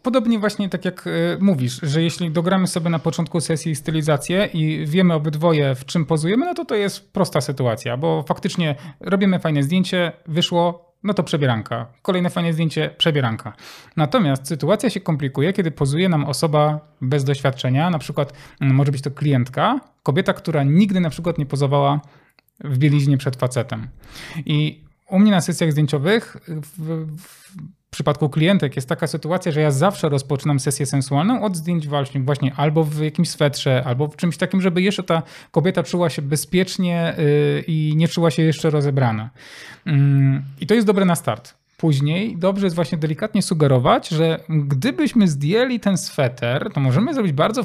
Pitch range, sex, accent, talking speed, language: 145-180 Hz, male, native, 165 wpm, Polish